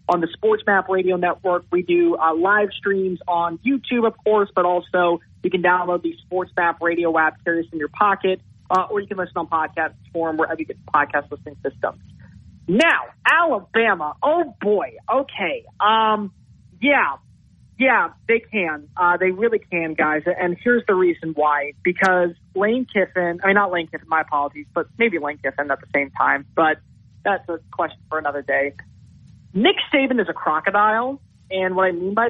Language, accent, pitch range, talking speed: English, American, 155-200 Hz, 185 wpm